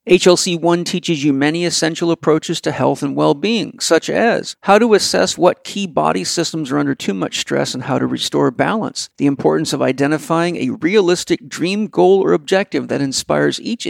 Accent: American